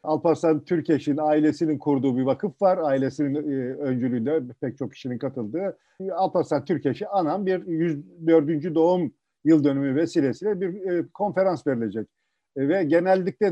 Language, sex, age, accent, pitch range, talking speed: Turkish, male, 50-69, native, 145-185 Hz, 140 wpm